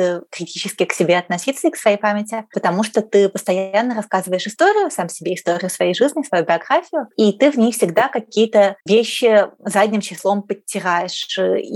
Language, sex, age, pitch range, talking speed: Russian, female, 20-39, 180-215 Hz, 160 wpm